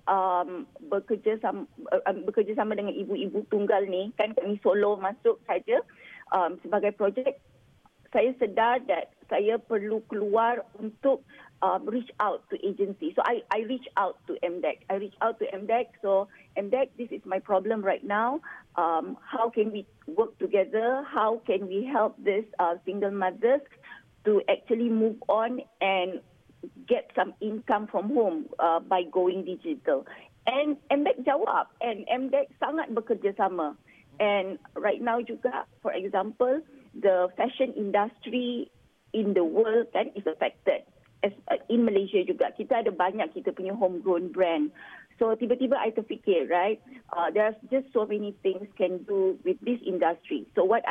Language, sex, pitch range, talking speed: Malay, female, 195-260 Hz, 150 wpm